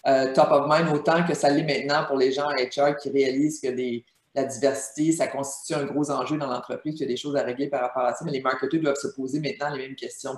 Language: French